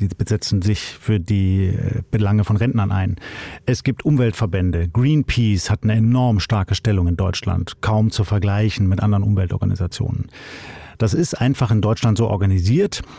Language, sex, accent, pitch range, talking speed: German, male, German, 100-120 Hz, 150 wpm